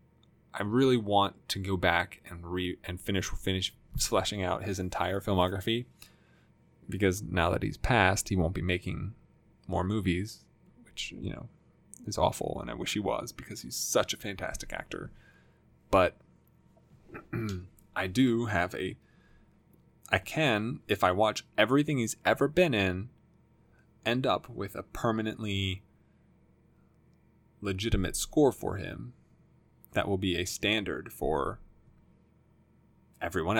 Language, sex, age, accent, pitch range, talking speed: English, male, 20-39, American, 90-115 Hz, 130 wpm